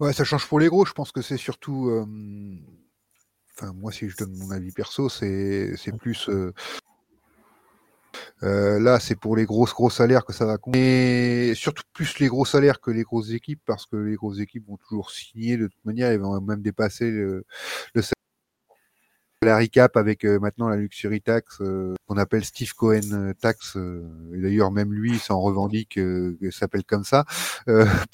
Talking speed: 195 wpm